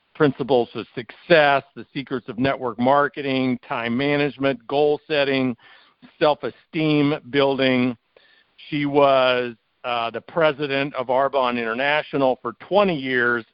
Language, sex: English, male